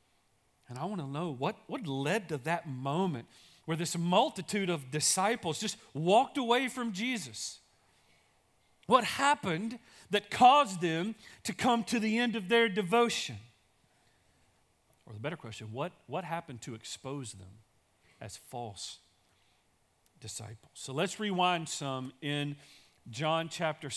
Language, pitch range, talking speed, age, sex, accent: English, 145-205 Hz, 135 wpm, 40-59, male, American